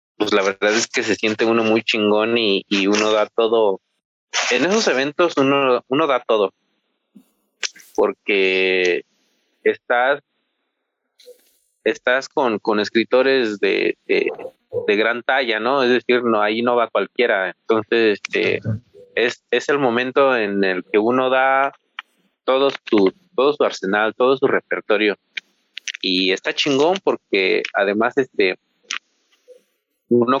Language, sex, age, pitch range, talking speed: Spanish, male, 30-49, 105-155 Hz, 130 wpm